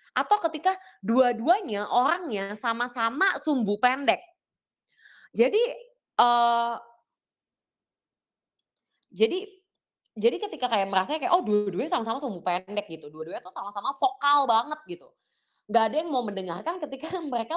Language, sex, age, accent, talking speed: Indonesian, female, 20-39, native, 120 wpm